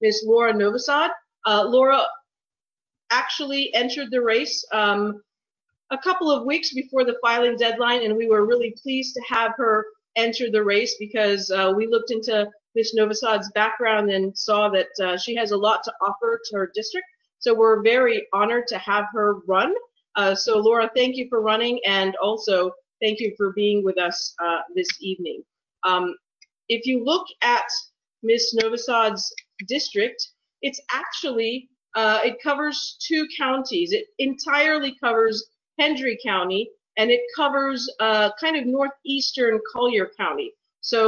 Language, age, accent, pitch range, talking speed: English, 40-59, American, 210-270 Hz, 155 wpm